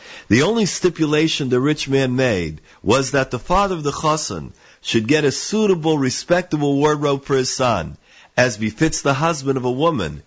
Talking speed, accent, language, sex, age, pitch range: 175 wpm, American, English, male, 50-69, 115-160 Hz